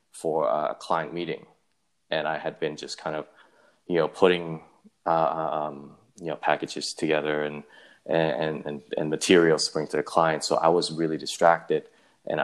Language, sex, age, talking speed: English, male, 20-39, 175 wpm